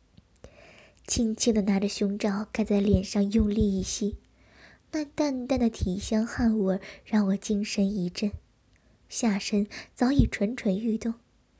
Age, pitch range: 20-39, 200-240 Hz